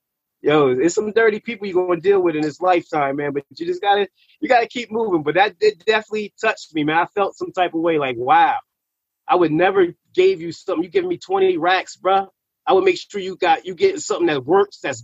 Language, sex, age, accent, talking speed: English, male, 30-49, American, 240 wpm